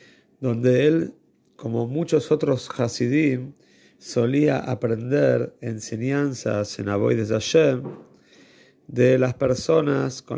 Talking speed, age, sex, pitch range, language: 100 wpm, 40-59, male, 110-130 Hz, Spanish